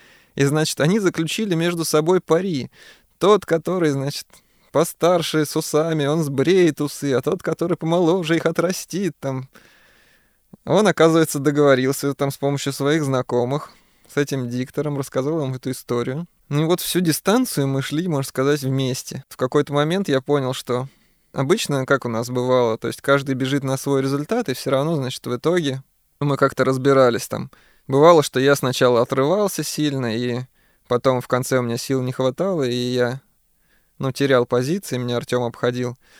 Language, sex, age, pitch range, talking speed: Russian, male, 20-39, 130-160 Hz, 165 wpm